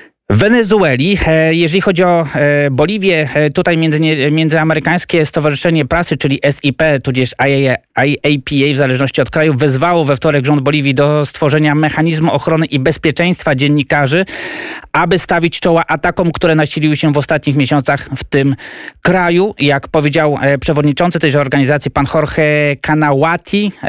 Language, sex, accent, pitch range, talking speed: Polish, male, native, 145-170 Hz, 130 wpm